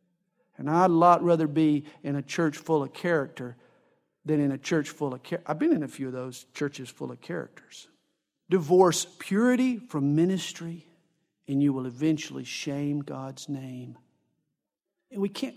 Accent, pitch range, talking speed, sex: American, 170-250 Hz, 170 wpm, male